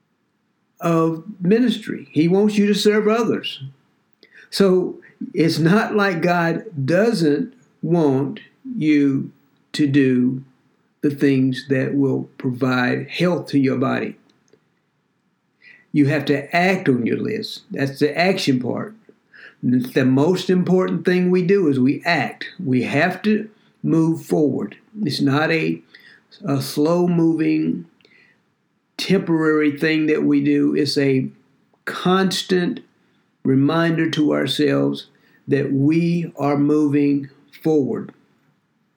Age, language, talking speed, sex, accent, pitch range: 60-79, English, 110 wpm, male, American, 140-190 Hz